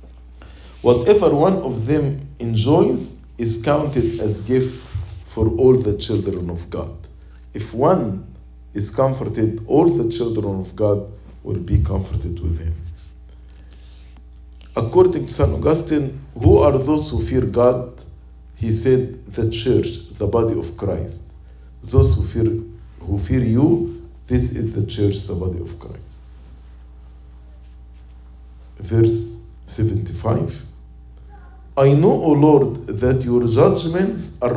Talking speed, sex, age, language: 125 wpm, male, 50-69, English